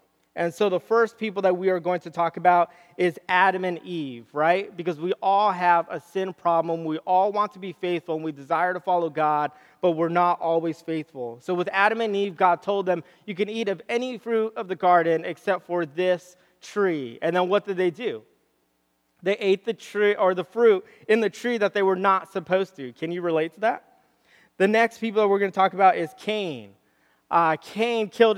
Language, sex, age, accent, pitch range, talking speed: English, male, 20-39, American, 165-200 Hz, 220 wpm